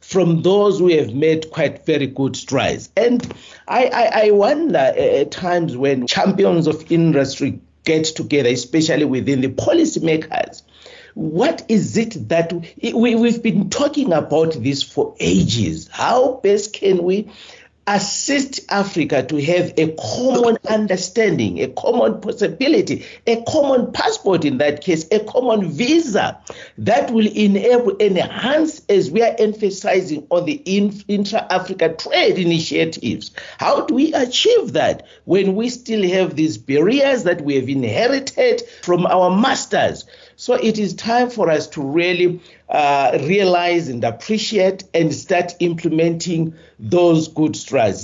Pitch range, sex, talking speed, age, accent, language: 155-225 Hz, male, 140 wpm, 50-69, South African, English